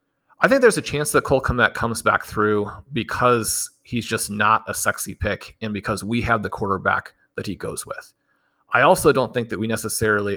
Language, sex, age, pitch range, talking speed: English, male, 30-49, 105-120 Hz, 205 wpm